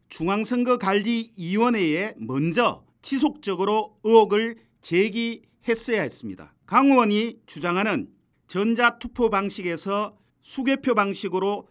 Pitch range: 200-245 Hz